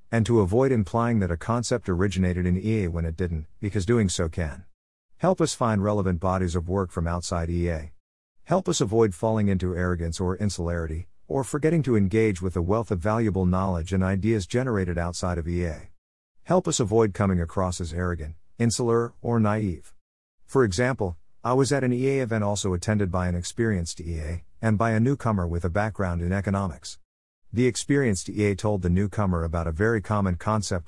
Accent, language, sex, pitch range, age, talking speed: American, English, male, 85-115 Hz, 50-69, 185 wpm